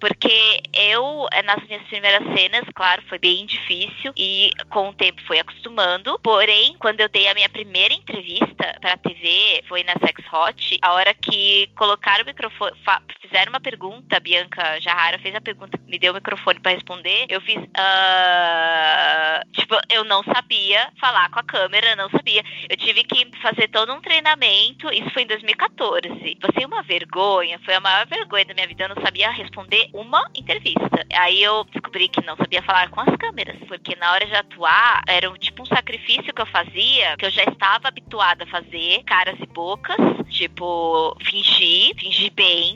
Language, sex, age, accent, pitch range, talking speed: Portuguese, female, 20-39, Brazilian, 180-220 Hz, 180 wpm